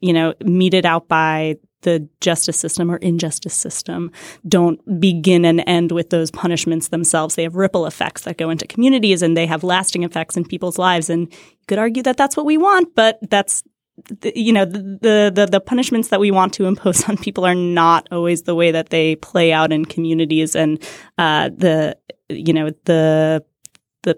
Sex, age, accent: female, 20-39, American